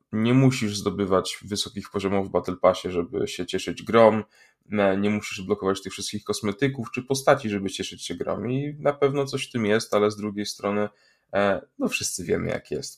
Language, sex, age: Polish, male, 10-29